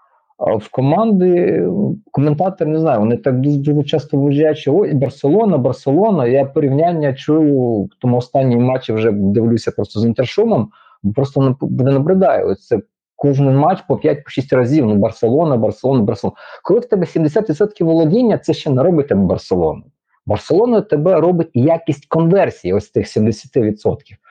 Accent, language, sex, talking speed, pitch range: native, Ukrainian, male, 140 wpm, 115-155 Hz